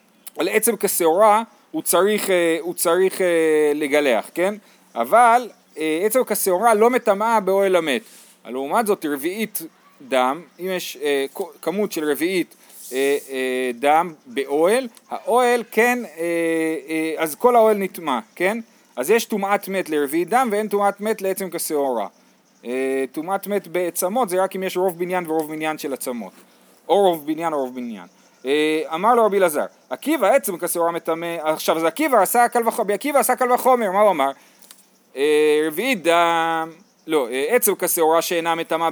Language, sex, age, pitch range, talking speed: Hebrew, male, 40-59, 160-230 Hz, 145 wpm